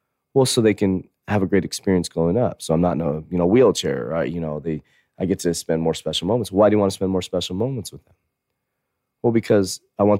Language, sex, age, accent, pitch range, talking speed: English, male, 30-49, American, 95-125 Hz, 260 wpm